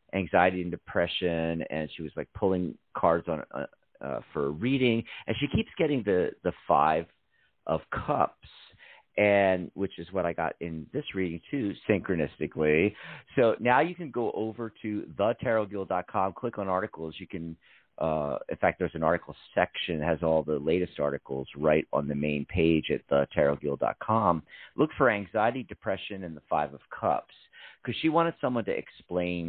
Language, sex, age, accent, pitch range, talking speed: English, male, 40-59, American, 80-105 Hz, 165 wpm